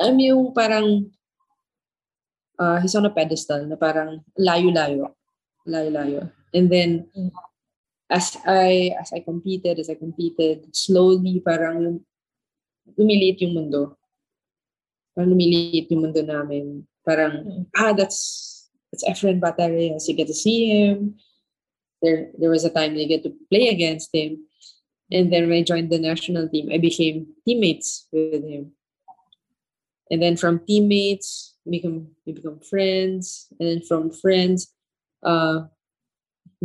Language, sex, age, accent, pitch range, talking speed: English, female, 20-39, Filipino, 155-185 Hz, 130 wpm